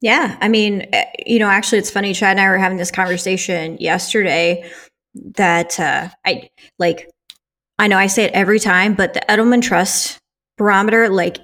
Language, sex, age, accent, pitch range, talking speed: English, female, 20-39, American, 190-235 Hz, 175 wpm